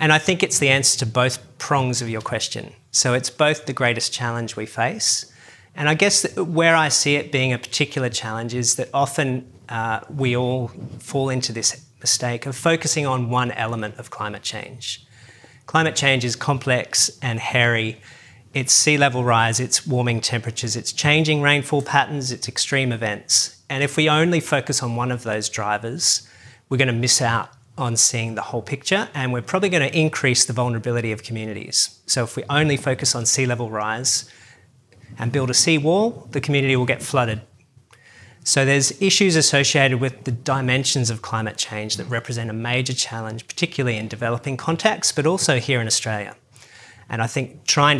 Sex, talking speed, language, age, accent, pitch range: male, 180 wpm, English, 40-59, Australian, 115-140 Hz